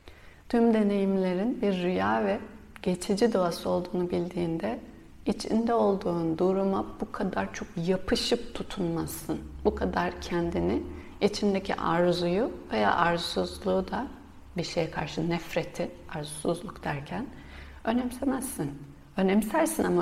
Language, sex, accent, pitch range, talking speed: Turkish, female, native, 165-205 Hz, 100 wpm